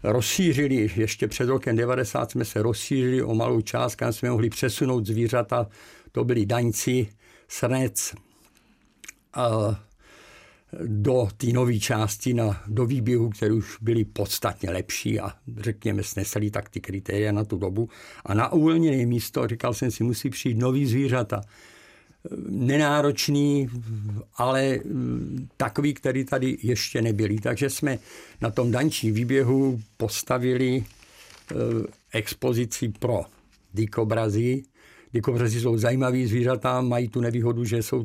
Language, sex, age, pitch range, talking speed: Czech, male, 60-79, 110-130 Hz, 125 wpm